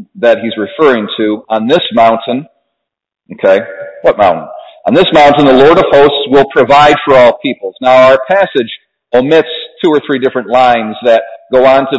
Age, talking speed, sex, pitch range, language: 40-59, 175 wpm, male, 125-175 Hz, English